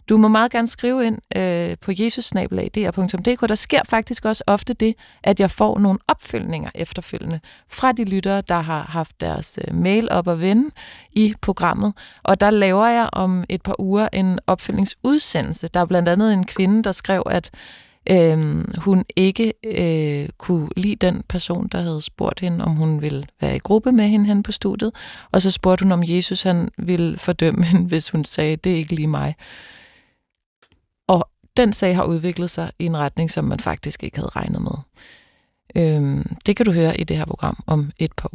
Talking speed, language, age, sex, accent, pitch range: 185 wpm, Danish, 30-49, female, native, 170-220 Hz